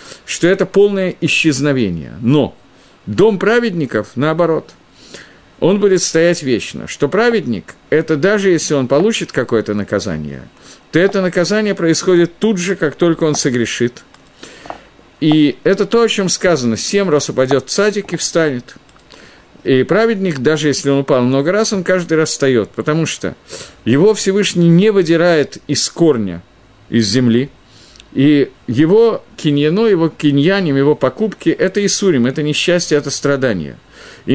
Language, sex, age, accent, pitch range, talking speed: Russian, male, 50-69, native, 140-195 Hz, 140 wpm